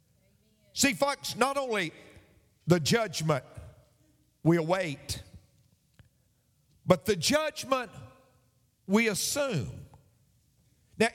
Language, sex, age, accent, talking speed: English, male, 50-69, American, 75 wpm